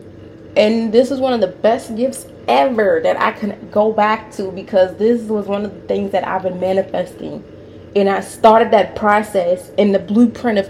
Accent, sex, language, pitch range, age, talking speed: American, female, English, 180-240 Hz, 20-39, 195 wpm